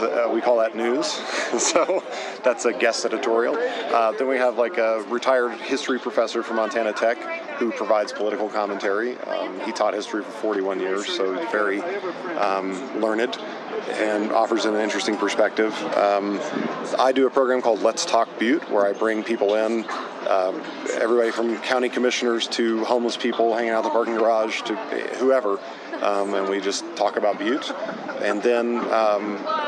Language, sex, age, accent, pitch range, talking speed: English, male, 40-59, American, 100-120 Hz, 165 wpm